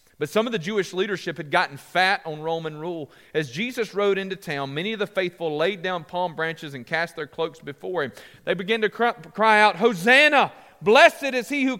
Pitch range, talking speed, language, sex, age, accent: 160-225 Hz, 210 wpm, English, male, 40-59, American